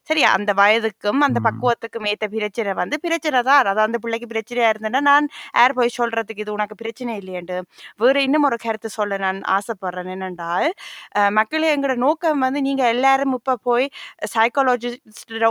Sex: female